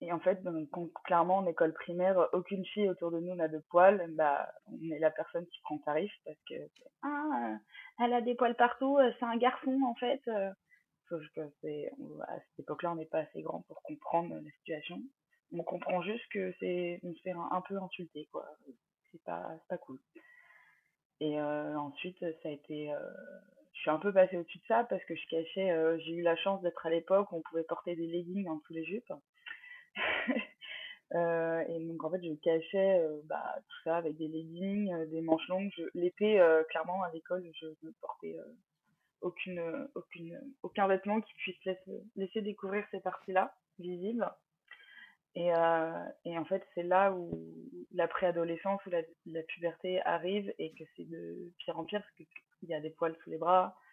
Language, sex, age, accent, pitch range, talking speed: French, female, 20-39, French, 165-195 Hz, 195 wpm